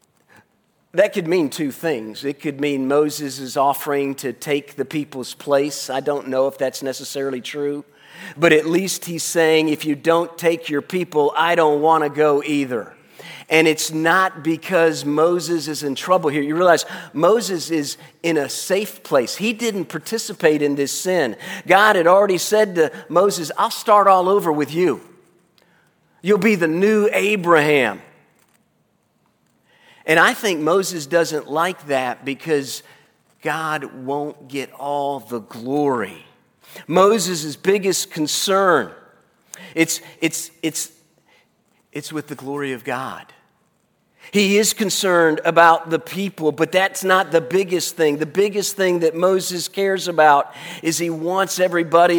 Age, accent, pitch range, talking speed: 40-59, American, 145-180 Hz, 150 wpm